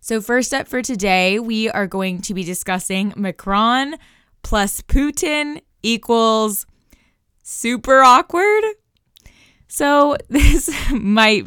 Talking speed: 105 wpm